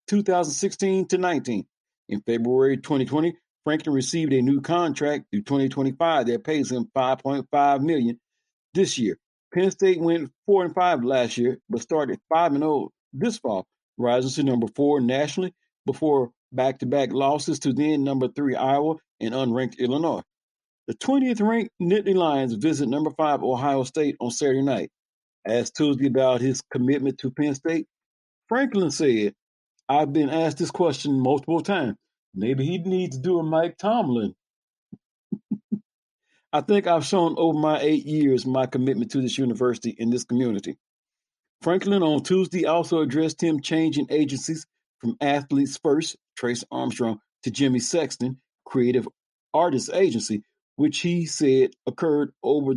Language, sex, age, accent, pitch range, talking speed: English, male, 50-69, American, 130-165 Hz, 145 wpm